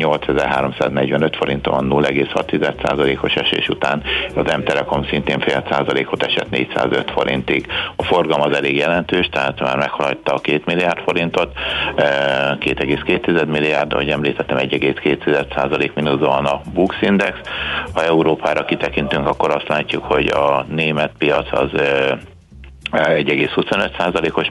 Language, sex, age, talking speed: Hungarian, male, 60-79, 120 wpm